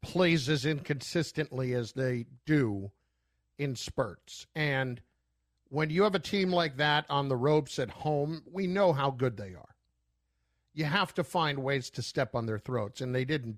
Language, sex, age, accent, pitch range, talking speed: English, male, 50-69, American, 125-185 Hz, 175 wpm